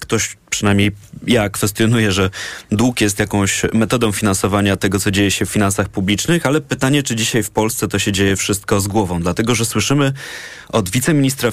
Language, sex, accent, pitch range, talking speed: Polish, male, native, 100-120 Hz, 175 wpm